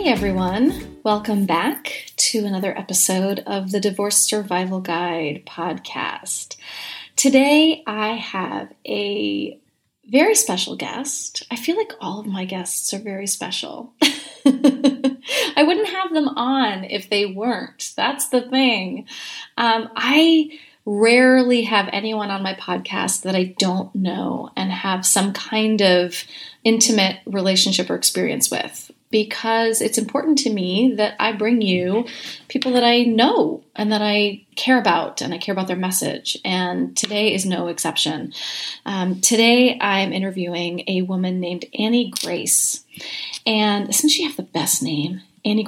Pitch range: 190-255 Hz